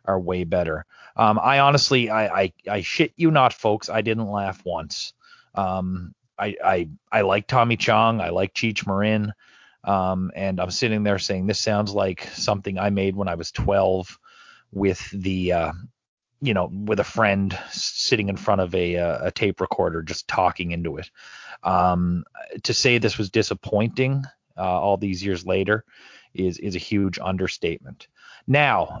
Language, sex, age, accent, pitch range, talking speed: English, male, 30-49, American, 95-120 Hz, 170 wpm